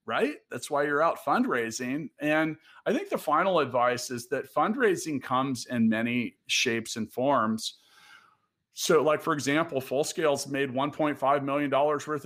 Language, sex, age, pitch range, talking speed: English, male, 40-59, 125-160 Hz, 145 wpm